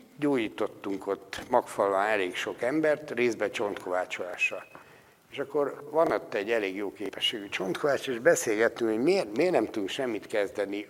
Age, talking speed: 60-79, 145 wpm